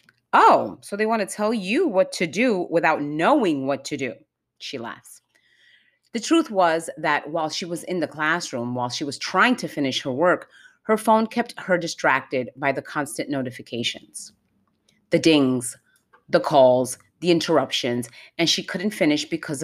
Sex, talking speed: female, 170 wpm